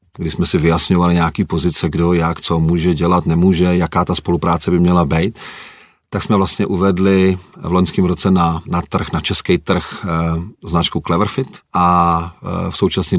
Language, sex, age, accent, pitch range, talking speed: Czech, male, 40-59, native, 85-100 Hz, 175 wpm